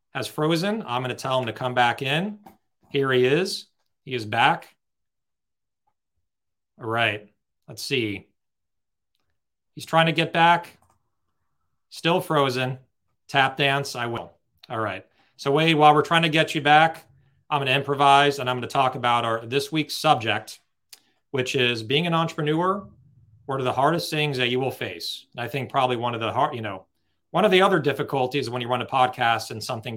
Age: 40-59